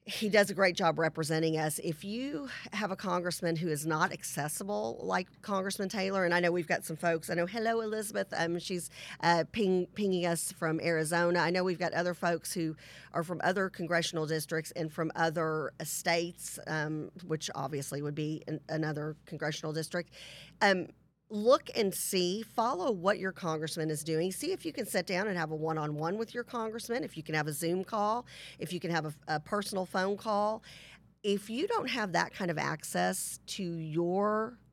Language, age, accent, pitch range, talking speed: English, 40-59, American, 160-195 Hz, 195 wpm